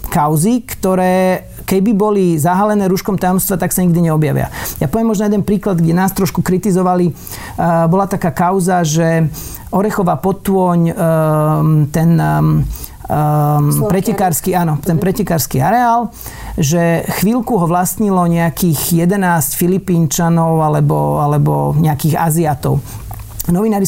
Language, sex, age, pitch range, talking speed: Slovak, male, 40-59, 160-195 Hz, 110 wpm